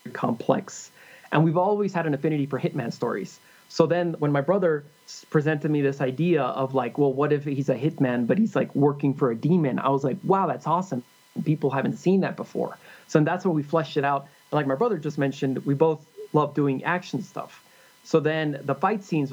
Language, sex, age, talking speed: English, male, 20-39, 210 wpm